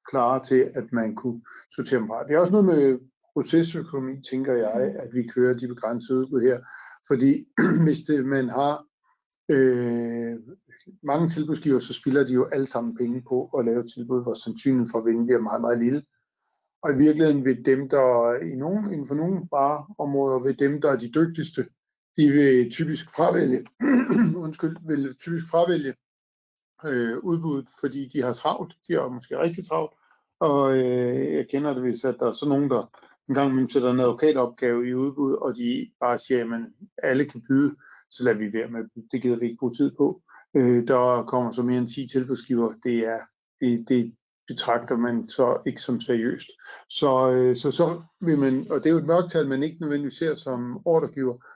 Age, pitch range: 50-69, 120-150 Hz